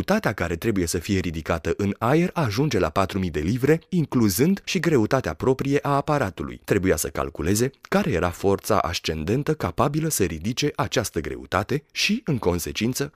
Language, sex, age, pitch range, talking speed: Romanian, male, 30-49, 90-140 Hz, 155 wpm